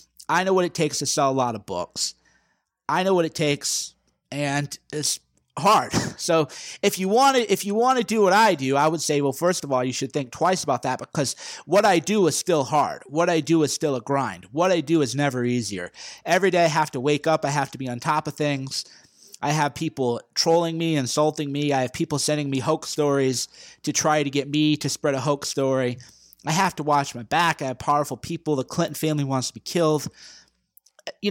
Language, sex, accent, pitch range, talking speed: English, male, American, 135-165 Hz, 230 wpm